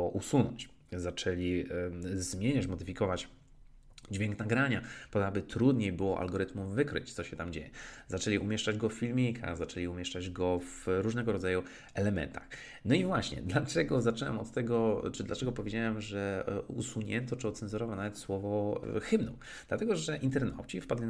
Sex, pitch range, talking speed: male, 95-125 Hz, 145 wpm